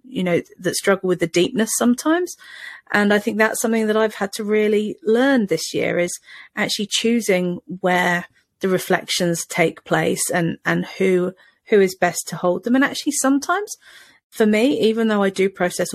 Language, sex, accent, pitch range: English, female, British, 170-210 Hz